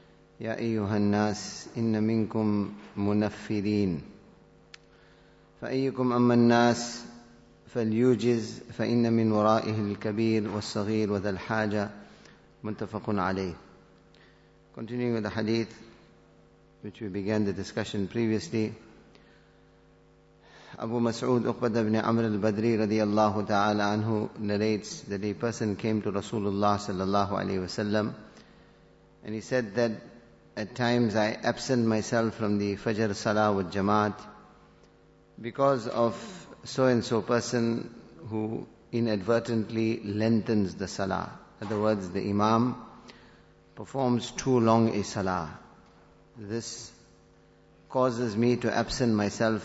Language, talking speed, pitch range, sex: English, 95 wpm, 105-115 Hz, male